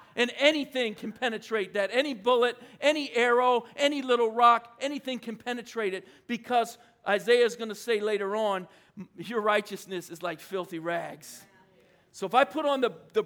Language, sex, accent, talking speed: English, male, American, 165 wpm